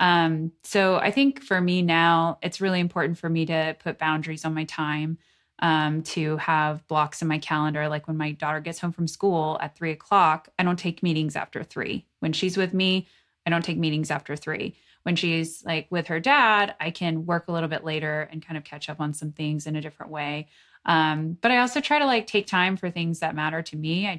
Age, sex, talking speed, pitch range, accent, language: 20-39, female, 230 wpm, 160-190 Hz, American, English